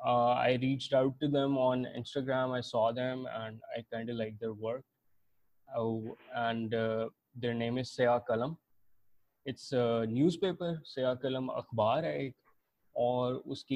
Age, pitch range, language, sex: 20-39, 115-145 Hz, Urdu, male